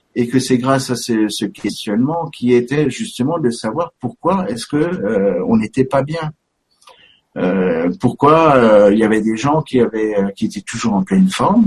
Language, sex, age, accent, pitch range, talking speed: French, male, 60-79, French, 115-190 Hz, 190 wpm